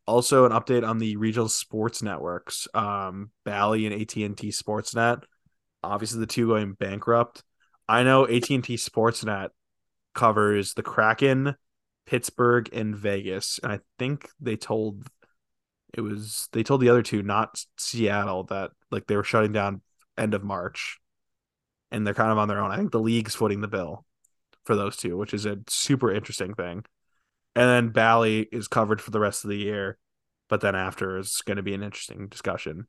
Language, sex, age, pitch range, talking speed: English, male, 20-39, 105-115 Hz, 175 wpm